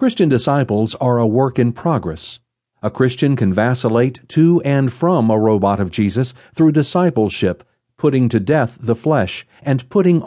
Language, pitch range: English, 110-145 Hz